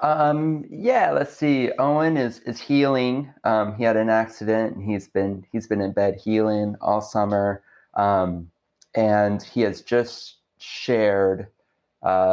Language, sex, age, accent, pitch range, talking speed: English, male, 20-39, American, 100-110 Hz, 145 wpm